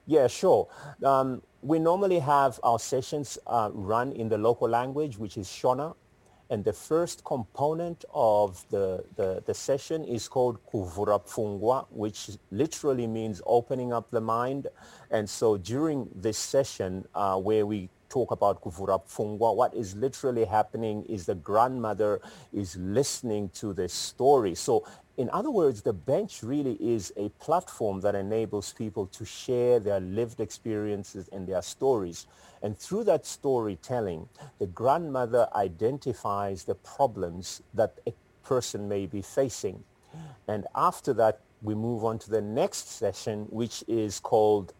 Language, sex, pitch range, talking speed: English, male, 100-125 Hz, 145 wpm